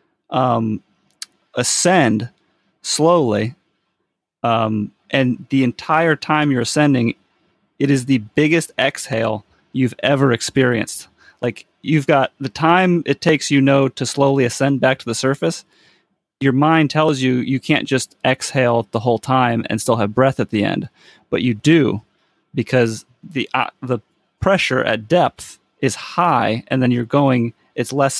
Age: 30-49